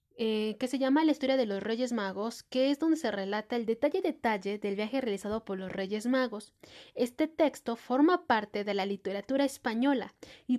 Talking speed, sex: 195 wpm, female